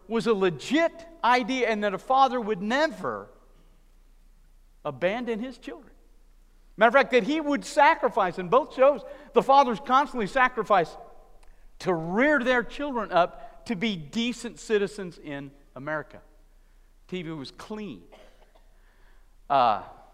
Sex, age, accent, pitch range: male, 50-69, American, 155-245 Hz